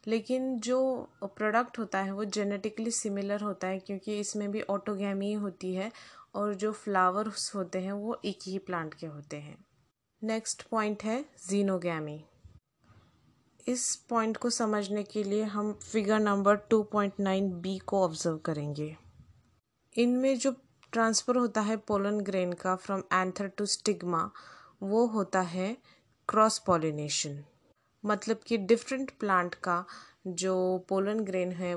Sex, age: female, 20-39